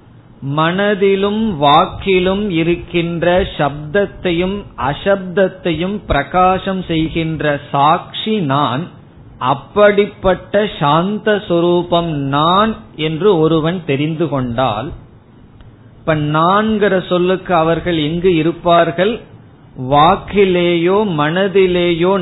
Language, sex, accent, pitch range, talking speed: Tamil, male, native, 140-185 Hz, 65 wpm